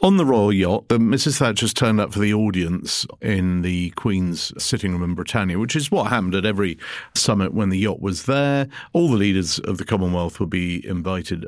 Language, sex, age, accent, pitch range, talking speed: English, male, 50-69, British, 95-120 Hz, 205 wpm